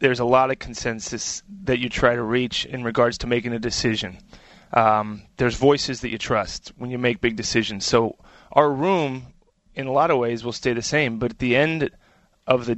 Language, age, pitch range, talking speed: English, 30-49, 120-145 Hz, 210 wpm